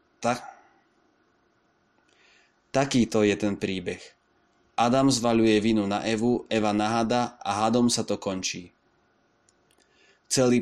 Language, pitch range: Slovak, 105-115 Hz